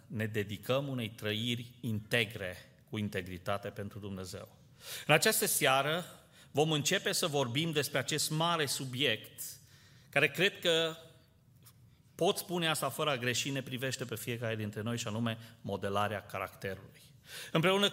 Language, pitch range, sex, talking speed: Romanian, 125-160 Hz, male, 130 wpm